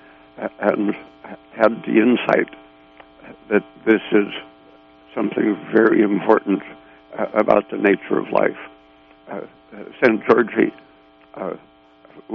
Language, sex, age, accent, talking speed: English, male, 60-79, American, 90 wpm